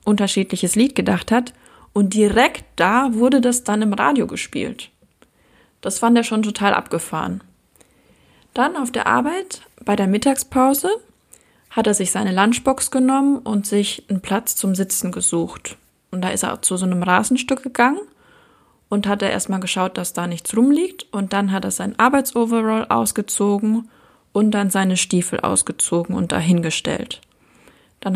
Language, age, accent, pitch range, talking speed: German, 20-39, German, 195-255 Hz, 155 wpm